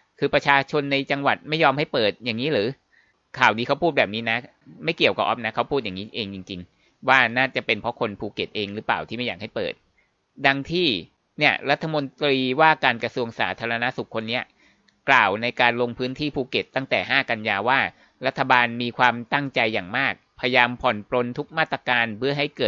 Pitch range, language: 115-135 Hz, Thai